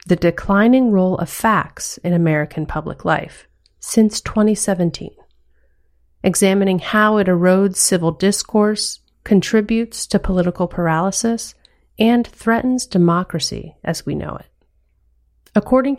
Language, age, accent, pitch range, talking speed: English, 30-49, American, 155-215 Hz, 110 wpm